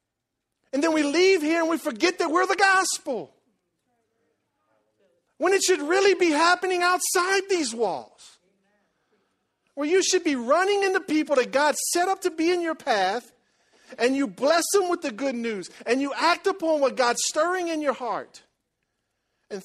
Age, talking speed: 40-59, 170 wpm